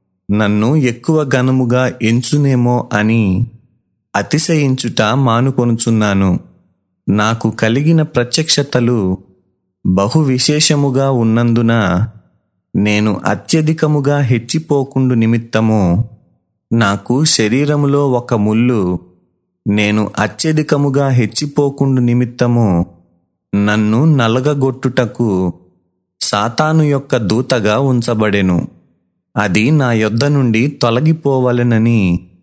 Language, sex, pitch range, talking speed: Telugu, male, 105-135 Hz, 65 wpm